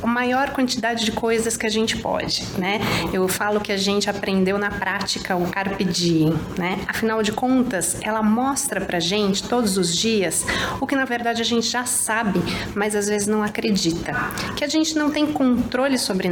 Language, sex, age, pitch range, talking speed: Portuguese, female, 30-49, 190-245 Hz, 190 wpm